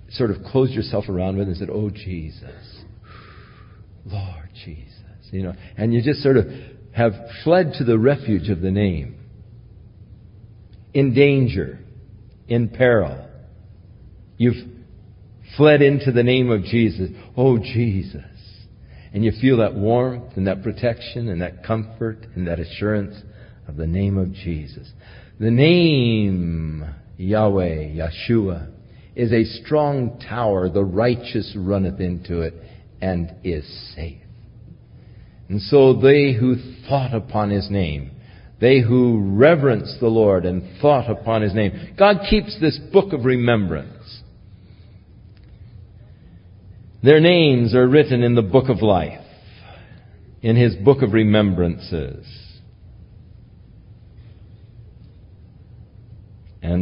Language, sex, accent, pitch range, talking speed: English, male, American, 95-120 Hz, 120 wpm